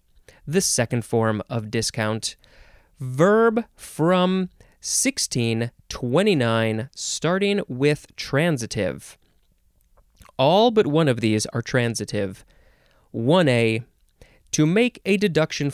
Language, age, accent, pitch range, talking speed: English, 20-39, American, 115-180 Hz, 90 wpm